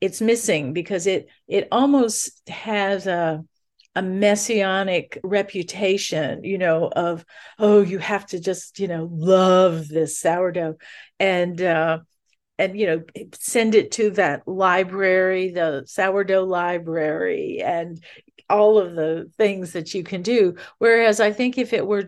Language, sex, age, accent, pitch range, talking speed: English, female, 50-69, American, 170-205 Hz, 140 wpm